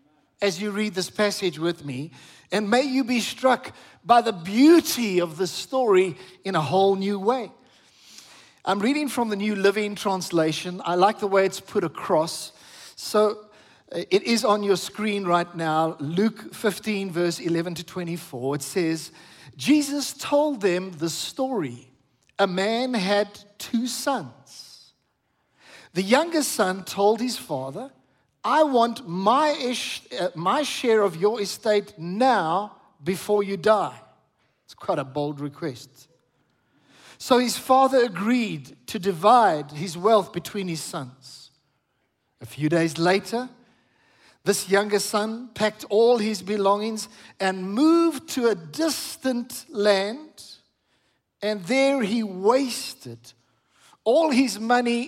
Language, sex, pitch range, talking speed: English, male, 175-235 Hz, 135 wpm